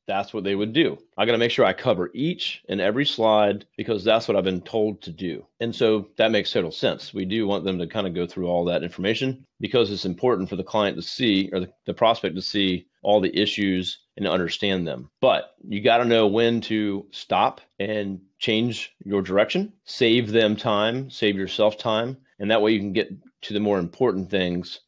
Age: 30-49